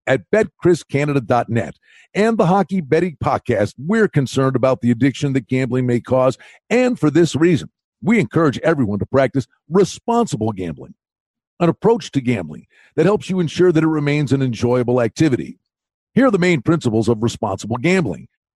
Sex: male